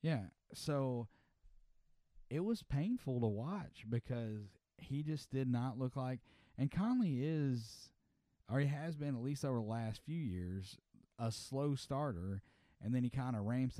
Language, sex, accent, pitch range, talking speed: English, male, American, 105-135 Hz, 160 wpm